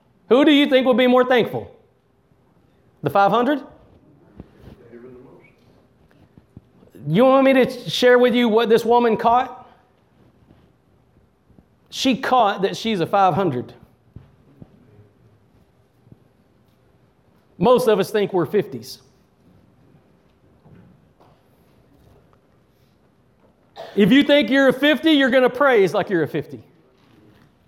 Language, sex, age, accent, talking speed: English, male, 40-59, American, 100 wpm